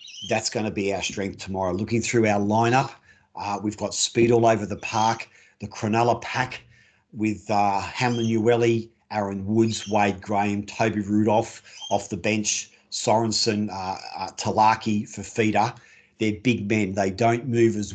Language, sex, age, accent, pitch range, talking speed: English, male, 40-59, Australian, 100-115 Hz, 160 wpm